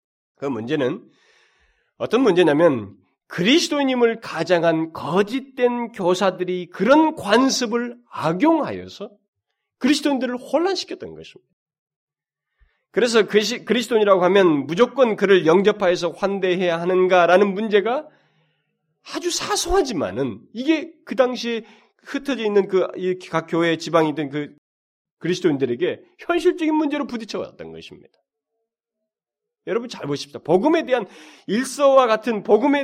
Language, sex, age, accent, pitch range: Korean, male, 40-59, native, 195-280 Hz